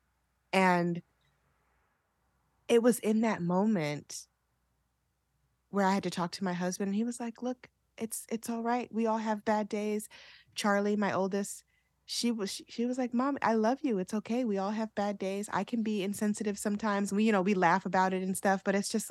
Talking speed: 200 wpm